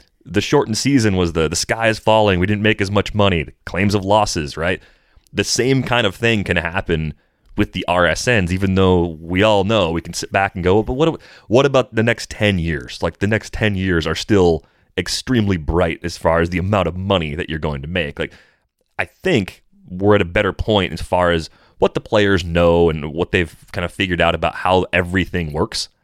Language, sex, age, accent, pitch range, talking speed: English, male, 30-49, American, 85-105 Hz, 225 wpm